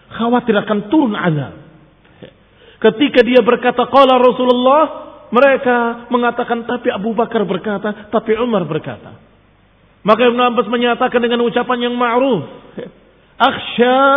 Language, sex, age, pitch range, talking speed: Indonesian, male, 40-59, 160-270 Hz, 110 wpm